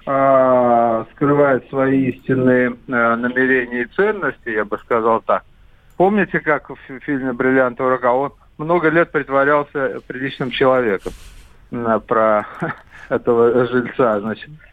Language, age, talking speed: Russian, 50-69, 115 wpm